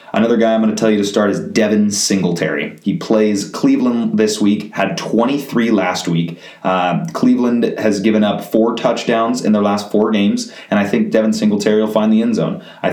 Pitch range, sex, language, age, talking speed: 90-115 Hz, male, English, 30-49, 205 wpm